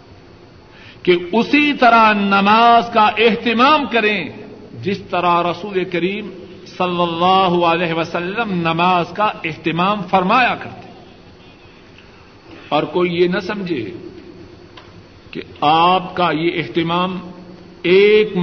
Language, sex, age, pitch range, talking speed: Urdu, male, 50-69, 165-210 Hz, 100 wpm